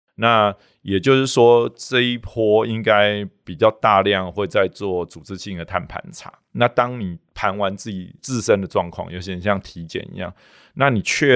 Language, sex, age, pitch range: Chinese, male, 20-39, 90-105 Hz